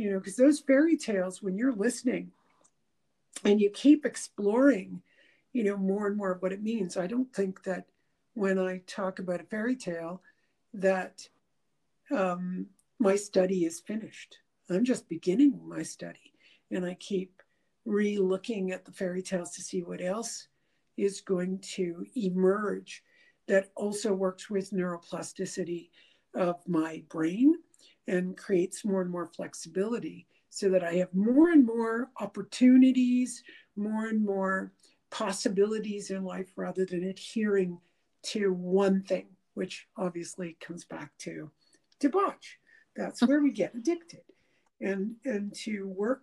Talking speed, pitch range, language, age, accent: 140 wpm, 185-240 Hz, English, 60-79, American